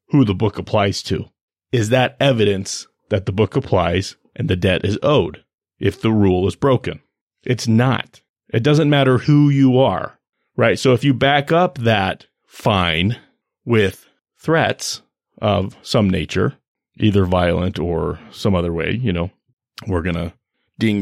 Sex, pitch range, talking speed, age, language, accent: male, 95-130 Hz, 155 wpm, 30-49, English, American